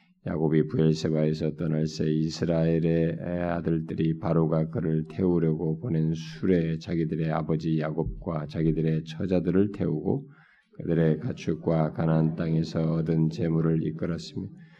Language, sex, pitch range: Korean, male, 80-85 Hz